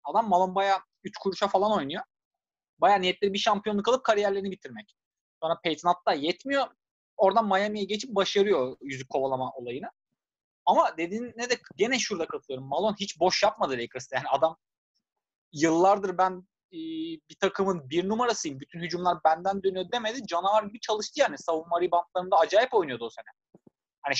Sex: male